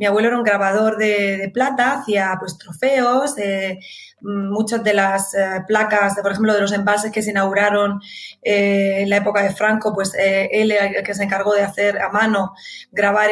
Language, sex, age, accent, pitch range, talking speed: Spanish, female, 20-39, Spanish, 200-235 Hz, 195 wpm